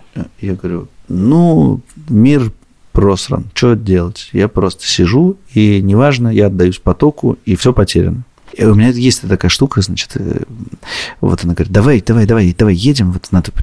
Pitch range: 85-115 Hz